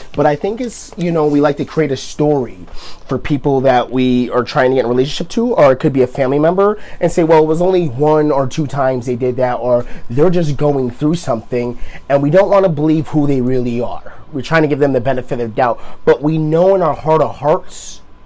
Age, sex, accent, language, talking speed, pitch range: 30-49, male, American, English, 250 wpm, 120-150 Hz